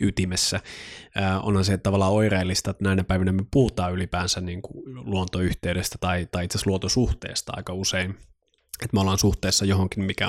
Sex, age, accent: male, 20-39, native